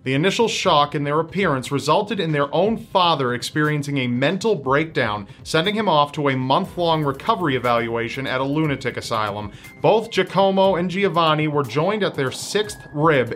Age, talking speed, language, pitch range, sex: 40-59, 165 wpm, English, 135-185 Hz, male